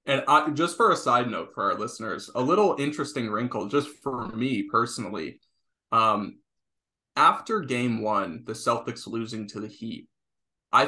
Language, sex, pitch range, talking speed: English, male, 120-185 Hz, 155 wpm